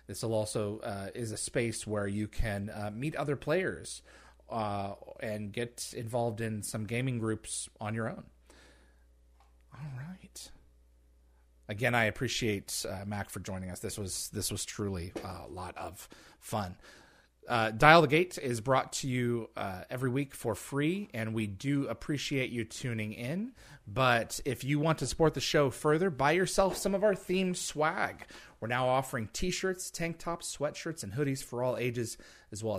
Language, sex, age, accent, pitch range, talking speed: English, male, 30-49, American, 105-135 Hz, 170 wpm